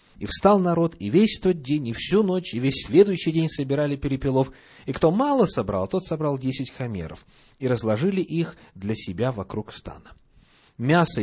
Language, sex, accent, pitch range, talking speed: Russian, male, native, 95-140 Hz, 170 wpm